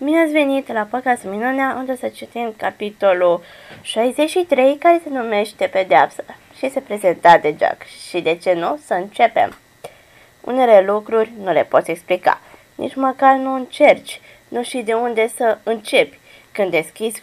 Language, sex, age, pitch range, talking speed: Romanian, female, 20-39, 185-270 Hz, 150 wpm